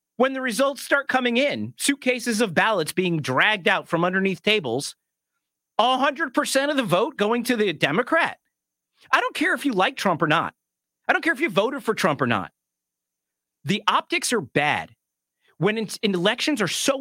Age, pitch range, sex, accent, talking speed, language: 40-59, 135-230 Hz, male, American, 175 wpm, English